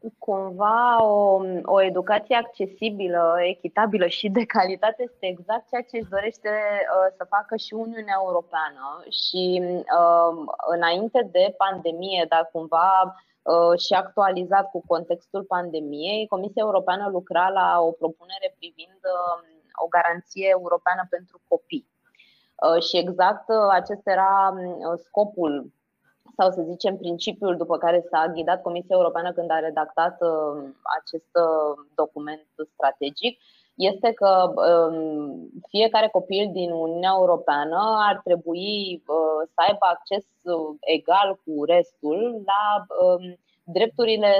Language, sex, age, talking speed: Romanian, female, 20-39, 110 wpm